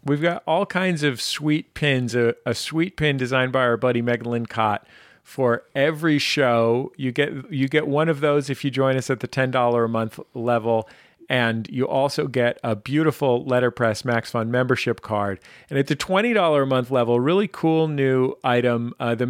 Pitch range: 115-150 Hz